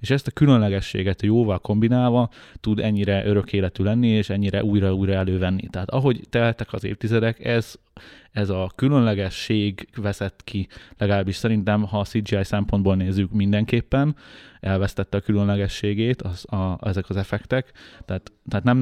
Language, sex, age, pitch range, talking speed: Hungarian, male, 20-39, 95-110 Hz, 145 wpm